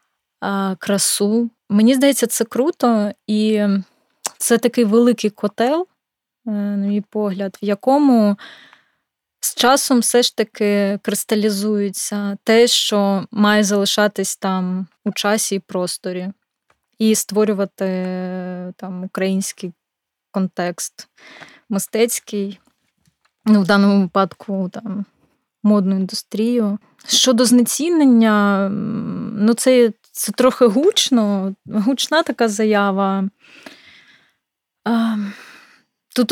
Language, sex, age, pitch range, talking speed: Ukrainian, female, 20-39, 195-230 Hz, 90 wpm